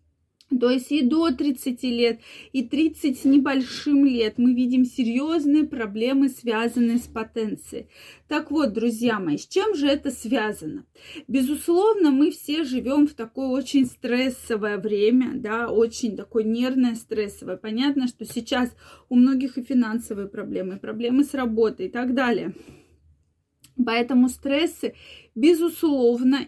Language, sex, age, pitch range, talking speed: Russian, female, 20-39, 230-295 Hz, 135 wpm